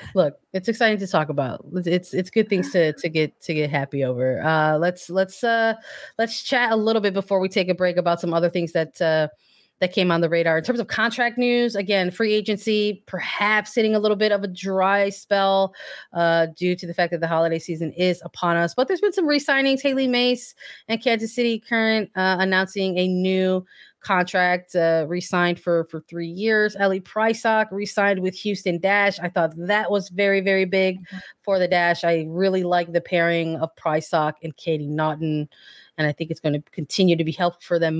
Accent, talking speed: American, 205 wpm